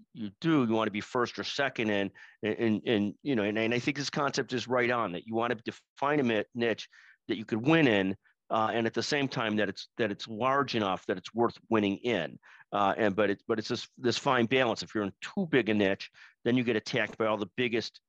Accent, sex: American, male